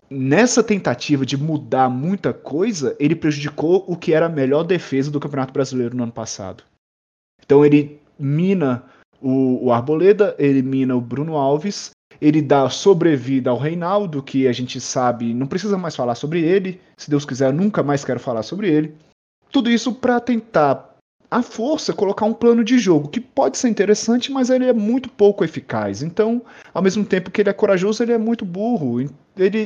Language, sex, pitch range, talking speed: Portuguese, male, 135-215 Hz, 180 wpm